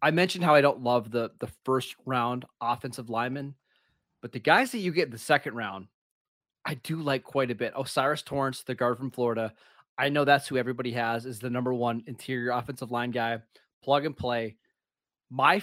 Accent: American